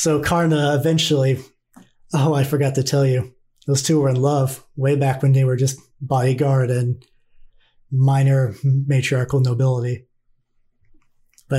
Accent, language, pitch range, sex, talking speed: American, English, 125-140 Hz, male, 135 wpm